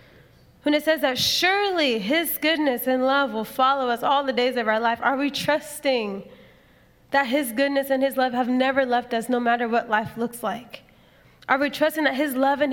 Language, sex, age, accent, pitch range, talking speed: English, female, 20-39, American, 230-275 Hz, 205 wpm